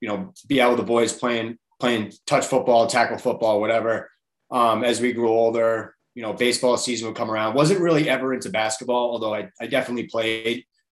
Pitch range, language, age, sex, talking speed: 110-130 Hz, English, 30-49, male, 195 wpm